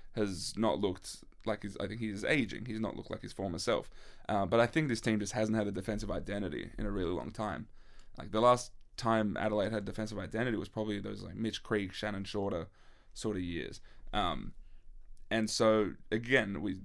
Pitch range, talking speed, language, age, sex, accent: 100-115 Hz, 205 wpm, English, 20-39, male, Australian